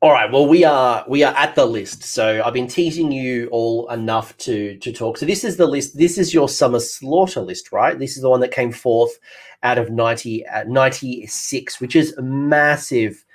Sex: male